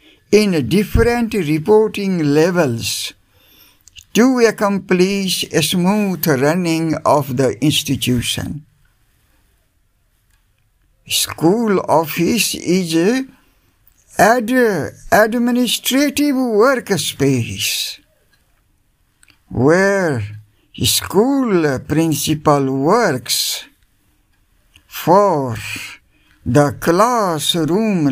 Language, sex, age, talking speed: English, male, 60-79, 55 wpm